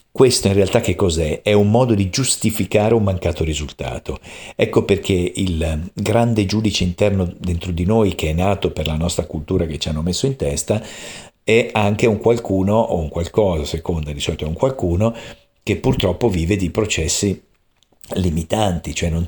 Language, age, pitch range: Italian, 50-69, 85-110 Hz